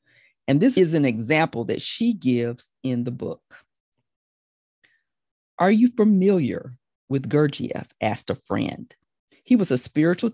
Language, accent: English, American